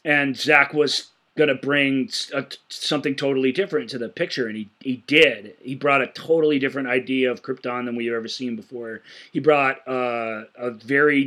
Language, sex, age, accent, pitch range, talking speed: English, male, 30-49, American, 125-140 Hz, 180 wpm